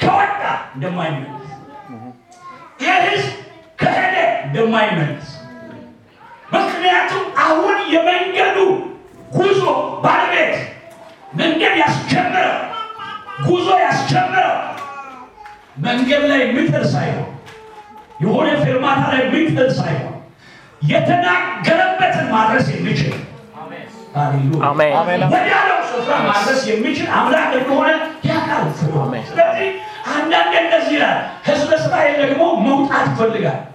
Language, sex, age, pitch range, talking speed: English, male, 50-69, 230-355 Hz, 75 wpm